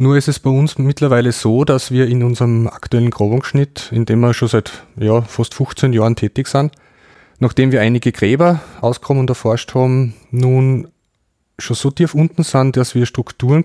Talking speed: 180 wpm